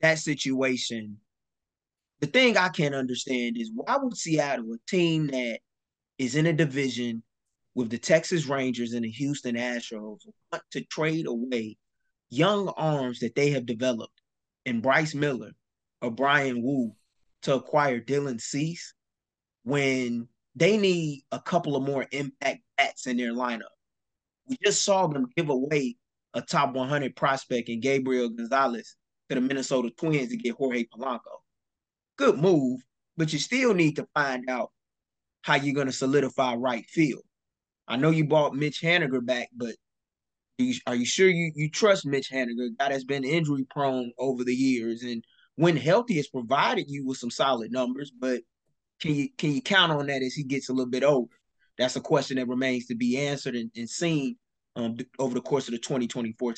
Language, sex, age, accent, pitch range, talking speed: English, male, 20-39, American, 120-150 Hz, 175 wpm